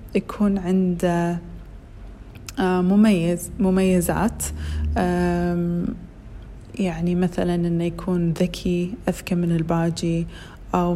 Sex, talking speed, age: female, 70 wpm, 30-49